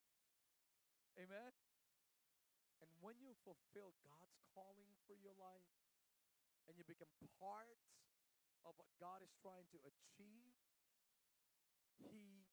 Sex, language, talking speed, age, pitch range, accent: male, English, 105 wpm, 40-59, 135-190 Hz, American